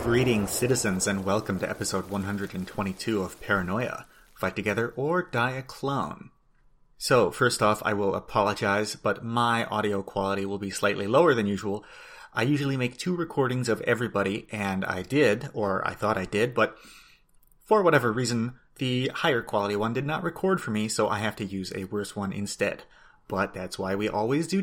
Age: 30-49